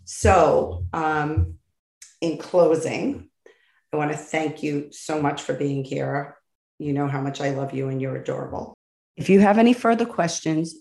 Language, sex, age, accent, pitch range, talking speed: English, female, 40-59, American, 145-175 Hz, 165 wpm